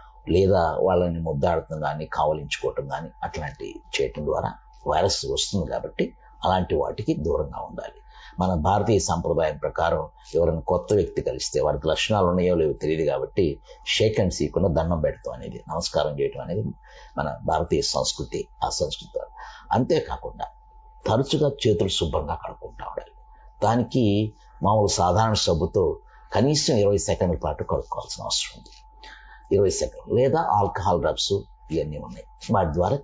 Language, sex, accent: Telugu, male, native